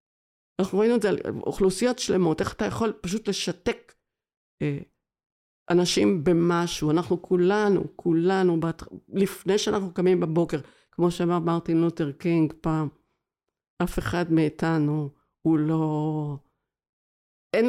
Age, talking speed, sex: 50-69, 120 wpm, female